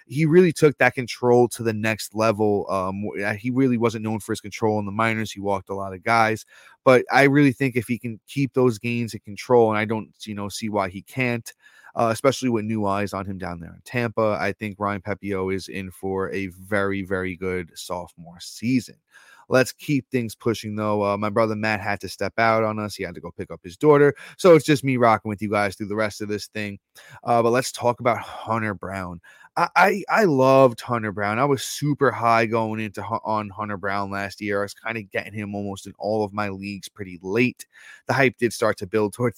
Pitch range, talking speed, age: 100-120 Hz, 235 wpm, 20-39